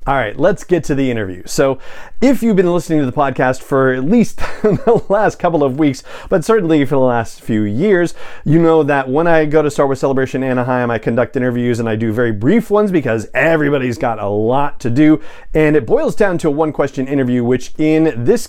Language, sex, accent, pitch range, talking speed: English, male, American, 125-155 Hz, 220 wpm